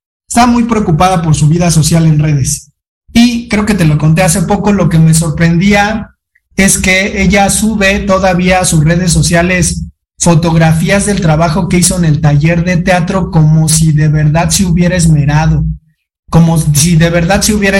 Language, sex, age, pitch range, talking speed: Spanish, male, 30-49, 160-195 Hz, 180 wpm